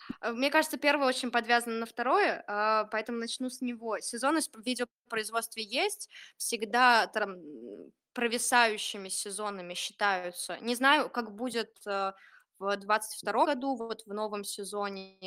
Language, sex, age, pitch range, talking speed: Russian, female, 20-39, 200-250 Hz, 120 wpm